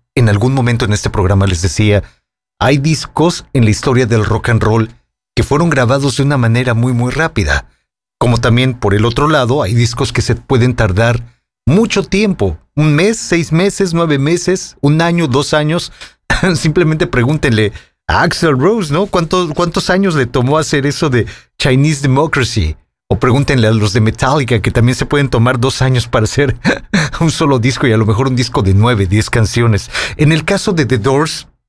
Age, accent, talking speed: 40-59, Mexican, 190 wpm